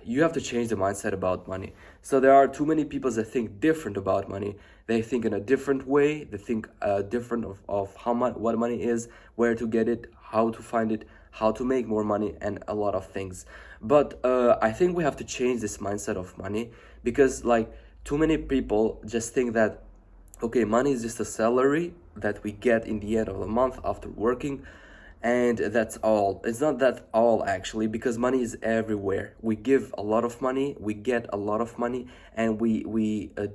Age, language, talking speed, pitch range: 20-39, English, 215 wpm, 105-125 Hz